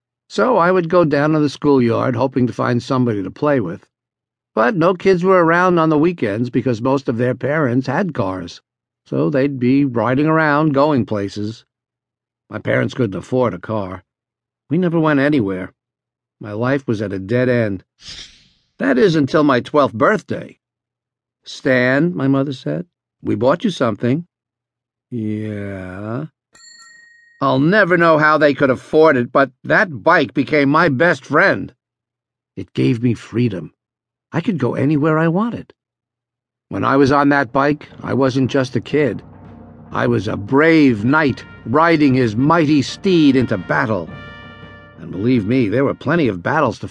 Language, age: English, 50-69